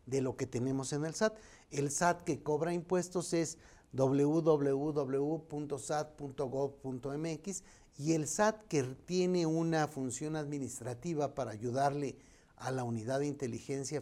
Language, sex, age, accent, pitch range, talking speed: Spanish, male, 50-69, Mexican, 130-160 Hz, 125 wpm